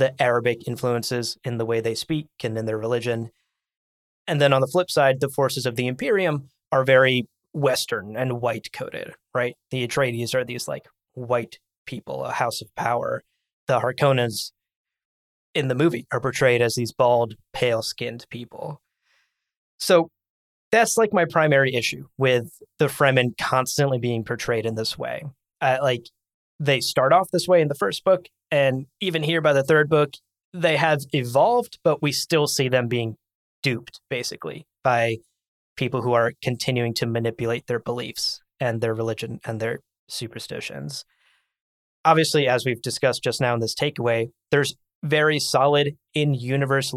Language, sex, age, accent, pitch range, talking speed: English, male, 20-39, American, 115-140 Hz, 160 wpm